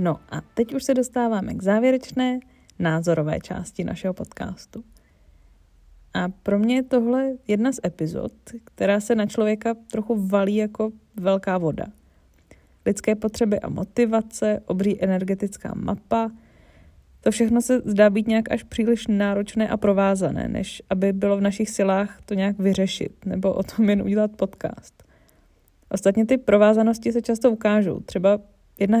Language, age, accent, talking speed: Czech, 20-39, native, 145 wpm